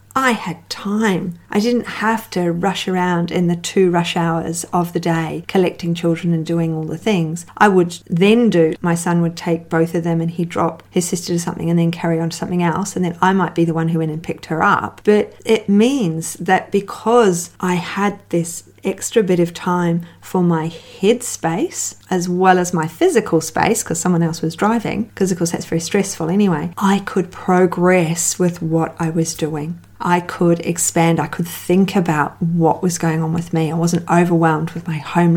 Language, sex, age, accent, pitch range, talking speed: English, female, 40-59, Australian, 165-195 Hz, 210 wpm